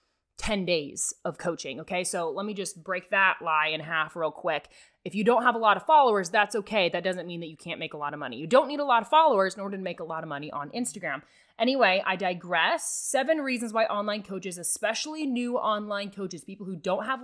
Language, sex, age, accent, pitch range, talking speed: English, female, 20-39, American, 185-245 Hz, 245 wpm